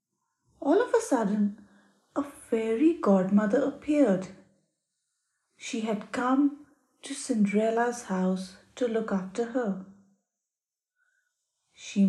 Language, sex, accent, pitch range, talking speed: English, female, Indian, 195-245 Hz, 95 wpm